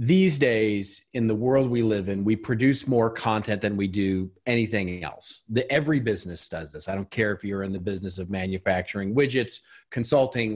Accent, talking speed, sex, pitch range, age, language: American, 190 wpm, male, 100-135 Hz, 40-59, English